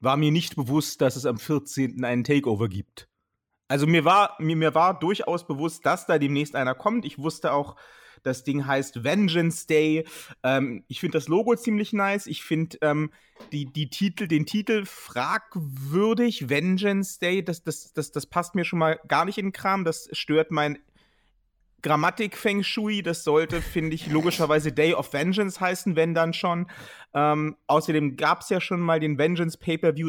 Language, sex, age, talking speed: German, male, 30-49, 180 wpm